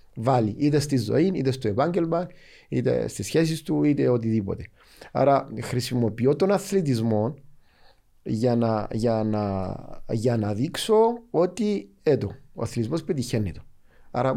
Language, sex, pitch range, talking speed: Greek, male, 110-155 Hz, 115 wpm